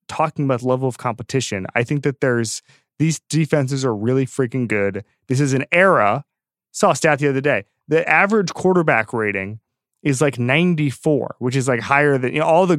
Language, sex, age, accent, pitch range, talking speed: English, male, 20-39, American, 110-145 Hz, 190 wpm